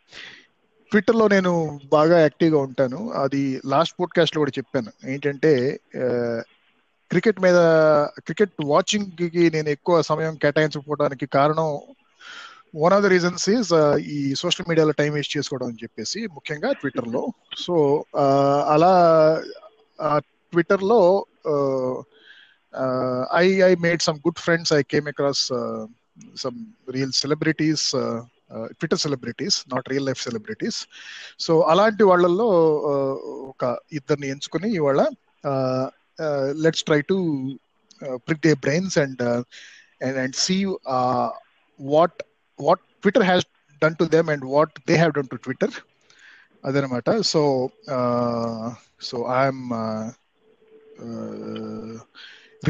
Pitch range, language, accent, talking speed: 135-180 Hz, Telugu, native, 115 wpm